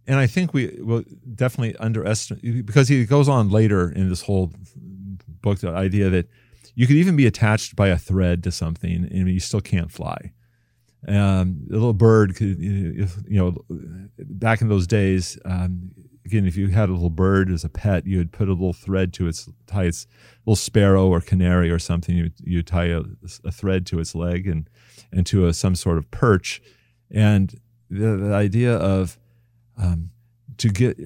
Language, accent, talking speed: English, American, 185 wpm